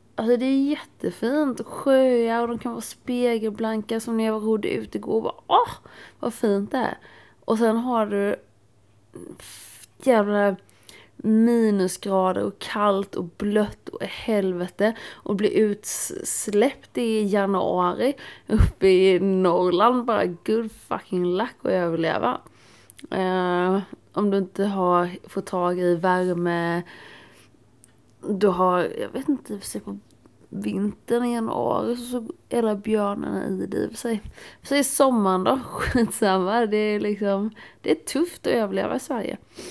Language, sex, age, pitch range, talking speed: Swedish, female, 30-49, 180-225 Hz, 140 wpm